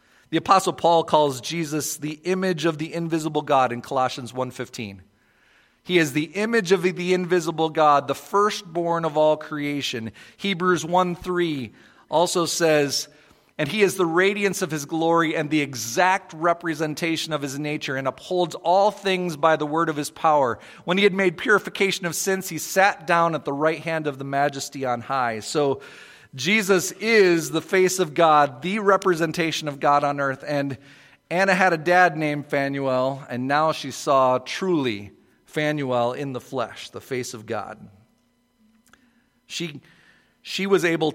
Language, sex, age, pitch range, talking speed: English, male, 40-59, 140-180 Hz, 165 wpm